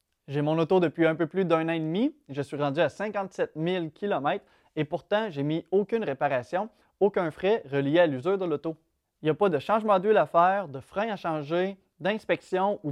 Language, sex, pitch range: French, male, 145-190 Hz